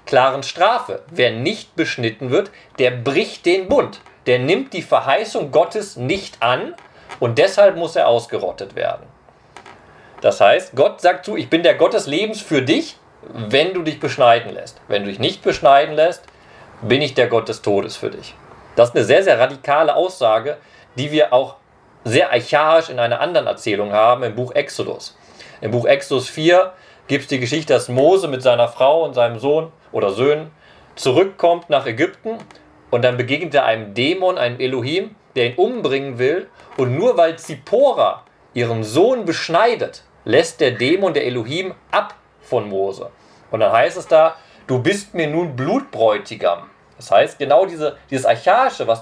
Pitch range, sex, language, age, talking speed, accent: 125-175 Hz, male, German, 40-59, 170 wpm, German